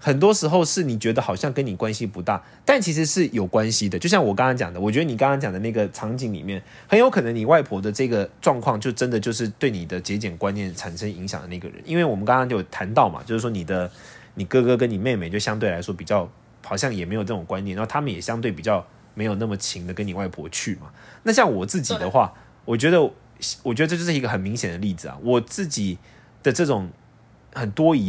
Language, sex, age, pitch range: Chinese, male, 20-39, 100-145 Hz